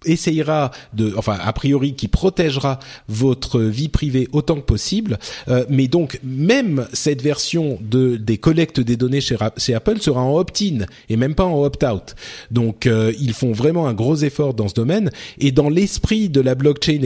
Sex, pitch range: male, 120-155 Hz